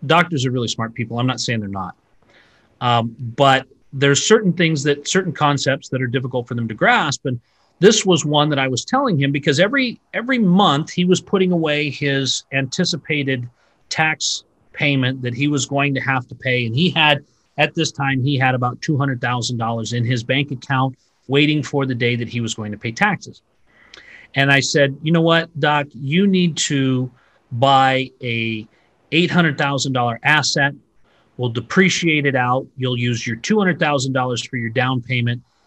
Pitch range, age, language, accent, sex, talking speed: 125-165 Hz, 40-59, English, American, male, 175 wpm